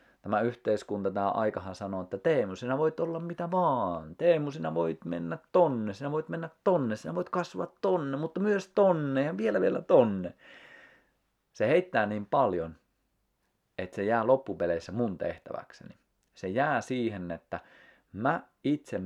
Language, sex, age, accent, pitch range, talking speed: Finnish, male, 30-49, native, 85-115 Hz, 150 wpm